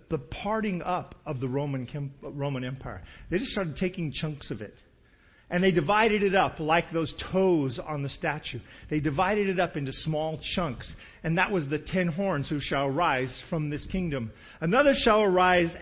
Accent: American